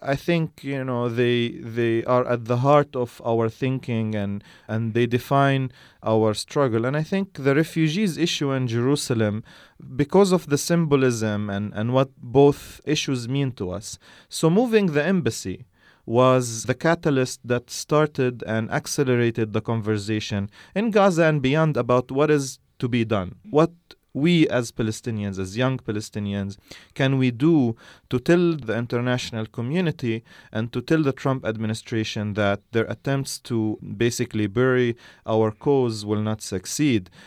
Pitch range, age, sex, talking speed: 115-145 Hz, 30-49, male, 150 wpm